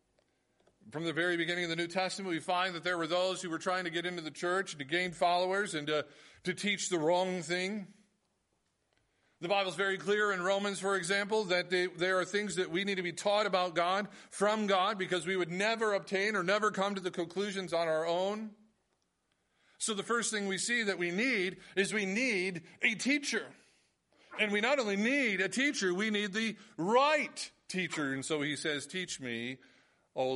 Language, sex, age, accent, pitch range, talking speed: English, male, 40-59, American, 170-205 Hz, 200 wpm